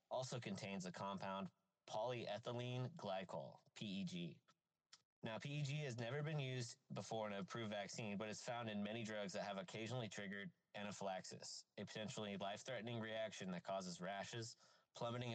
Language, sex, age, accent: English, male, 30-49, American